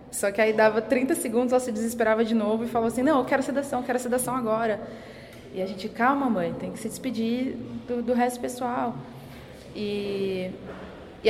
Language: Portuguese